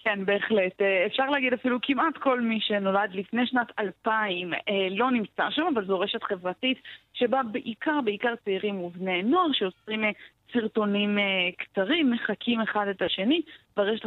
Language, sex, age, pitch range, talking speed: Hebrew, female, 20-39, 195-245 Hz, 140 wpm